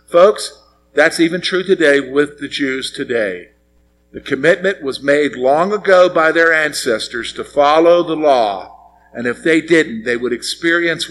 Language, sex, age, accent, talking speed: English, male, 50-69, American, 155 wpm